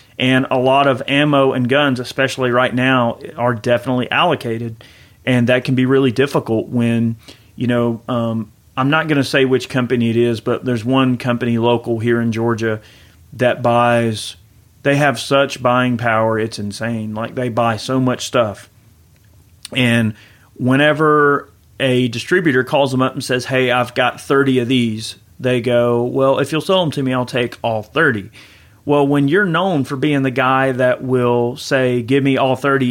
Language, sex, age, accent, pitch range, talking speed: English, male, 30-49, American, 120-140 Hz, 180 wpm